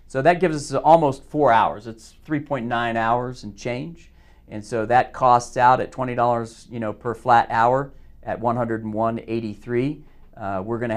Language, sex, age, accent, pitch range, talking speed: English, male, 40-59, American, 110-130 Hz, 165 wpm